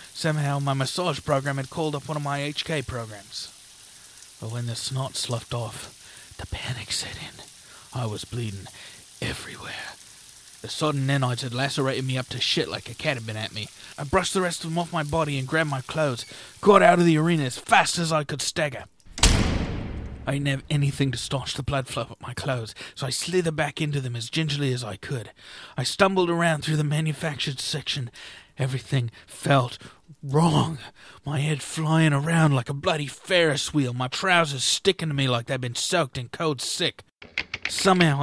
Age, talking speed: 30-49, 190 wpm